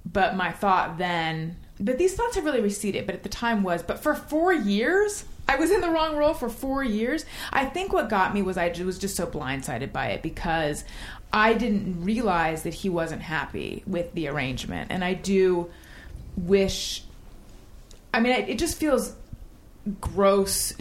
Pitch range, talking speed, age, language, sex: 170-225 Hz, 180 wpm, 30-49, English, female